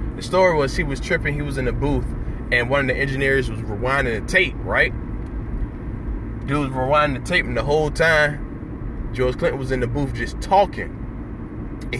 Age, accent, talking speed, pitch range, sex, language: 20-39, American, 195 wpm, 110-135 Hz, male, English